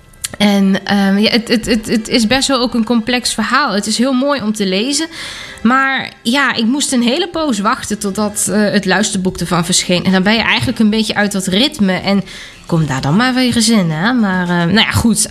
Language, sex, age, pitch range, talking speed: Dutch, female, 20-39, 190-250 Hz, 225 wpm